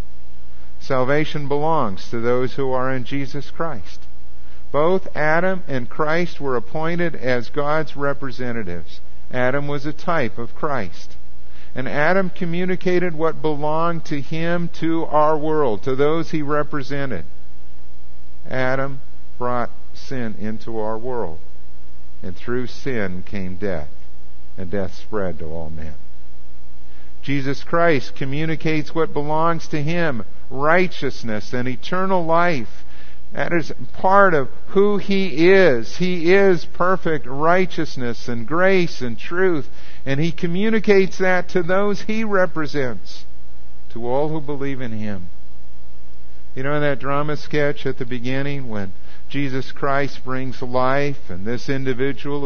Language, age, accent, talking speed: English, 50-69, American, 130 wpm